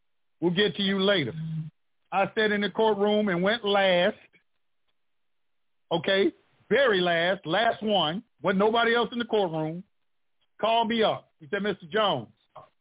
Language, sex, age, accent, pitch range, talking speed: English, male, 50-69, American, 190-230 Hz, 145 wpm